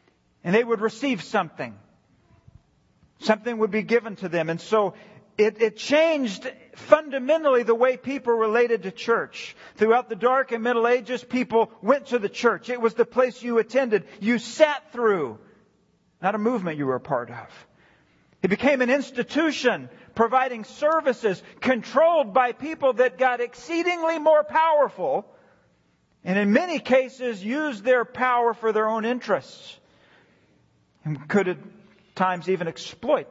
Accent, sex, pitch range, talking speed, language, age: American, male, 165-245 Hz, 150 wpm, English, 40-59